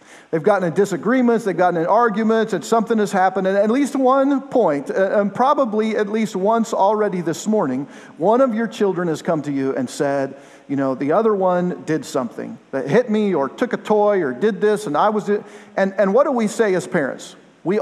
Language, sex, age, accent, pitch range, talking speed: English, male, 50-69, American, 180-225 Hz, 215 wpm